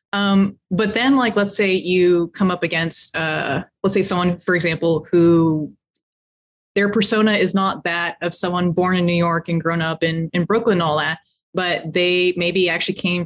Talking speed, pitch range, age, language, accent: 190 wpm, 170-210 Hz, 20-39, English, American